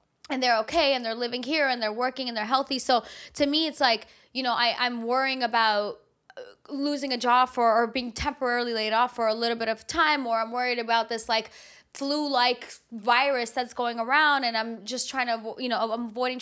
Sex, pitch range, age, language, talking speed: female, 220-255 Hz, 20-39, English, 215 wpm